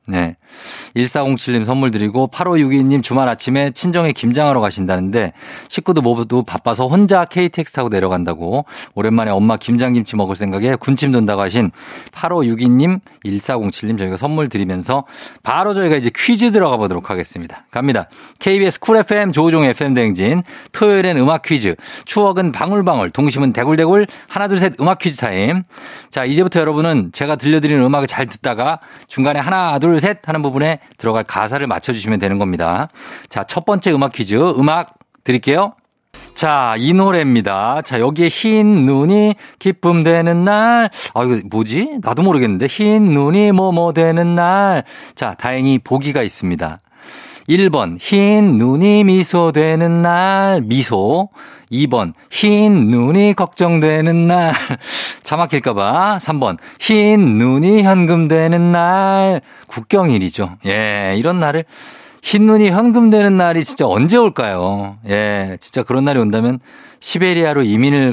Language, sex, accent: Korean, male, native